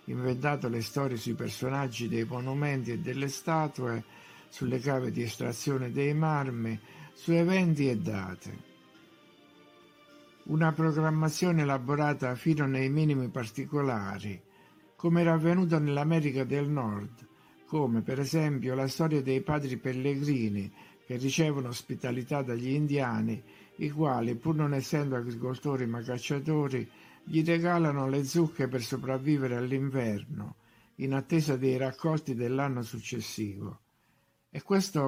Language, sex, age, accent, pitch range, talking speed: Italian, male, 60-79, native, 120-145 Hz, 120 wpm